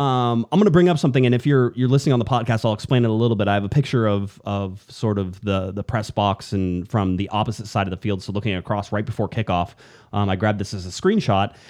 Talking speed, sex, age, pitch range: 275 wpm, male, 30-49, 100-125 Hz